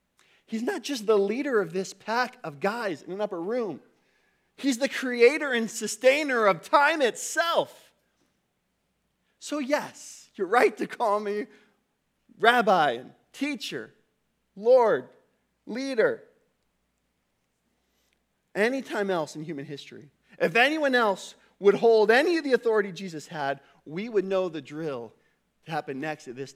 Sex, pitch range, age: male, 170-235 Hz, 40-59